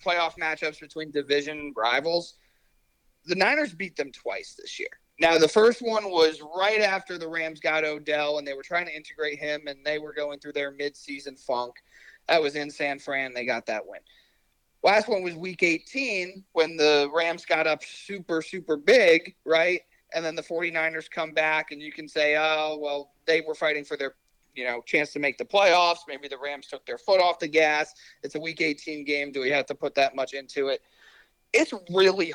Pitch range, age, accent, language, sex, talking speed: 140-165 Hz, 30-49, American, English, male, 205 wpm